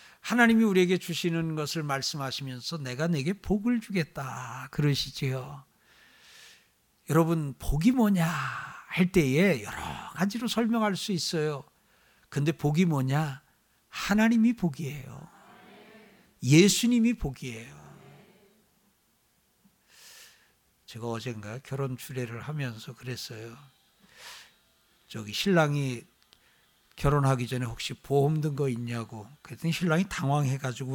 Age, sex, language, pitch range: 60-79, male, Korean, 130-175 Hz